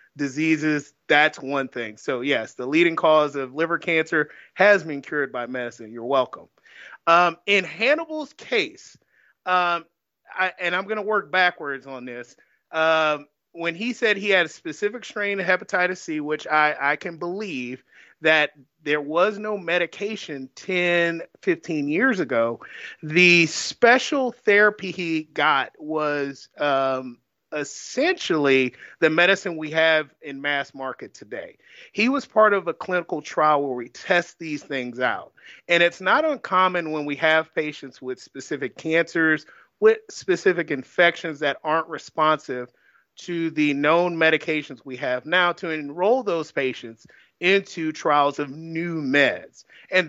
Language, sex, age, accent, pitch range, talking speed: English, male, 30-49, American, 145-185 Hz, 145 wpm